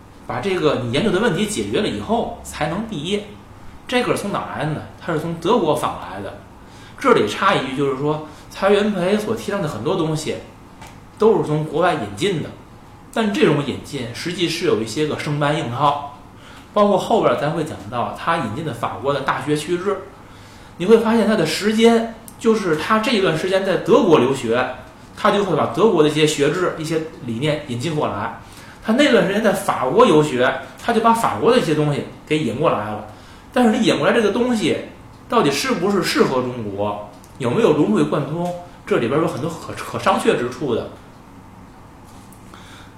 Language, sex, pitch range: Chinese, male, 120-195 Hz